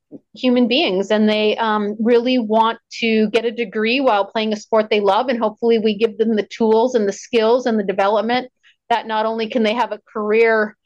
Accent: American